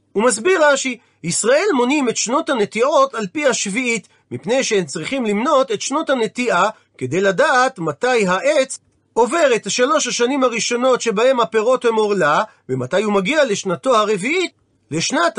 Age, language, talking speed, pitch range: 40-59, Hebrew, 145 wpm, 200-270 Hz